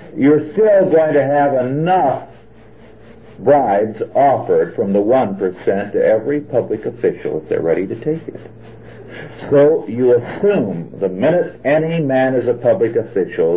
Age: 60-79